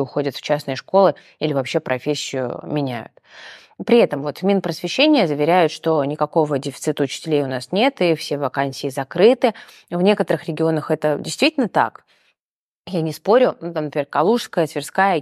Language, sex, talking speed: Russian, female, 155 wpm